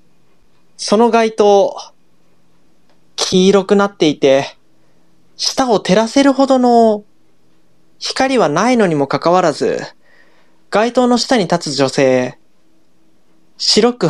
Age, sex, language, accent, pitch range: 20-39, male, Japanese, native, 170-245 Hz